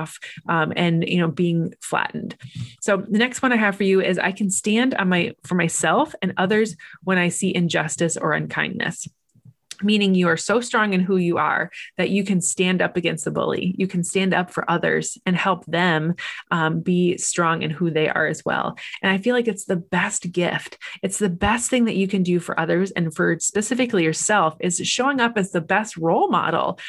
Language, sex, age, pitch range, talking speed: English, female, 20-39, 170-210 Hz, 210 wpm